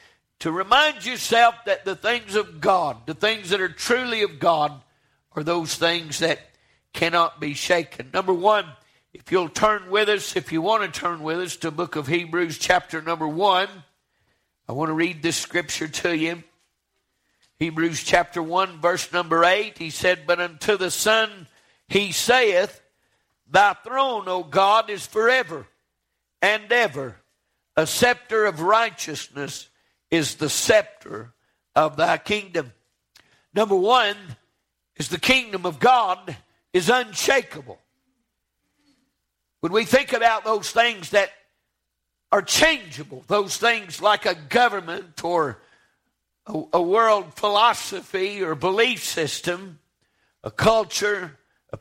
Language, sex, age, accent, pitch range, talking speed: English, male, 50-69, American, 165-215 Hz, 135 wpm